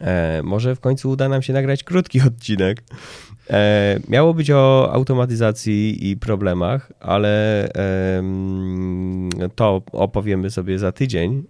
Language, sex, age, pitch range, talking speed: Polish, male, 20-39, 100-130 Hz, 110 wpm